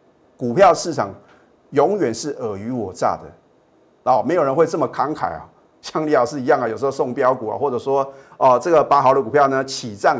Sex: male